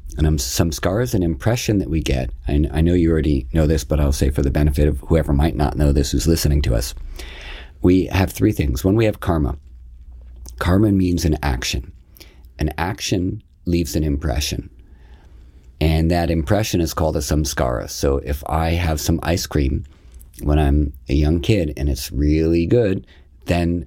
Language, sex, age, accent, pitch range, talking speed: English, male, 50-69, American, 70-90 Hz, 185 wpm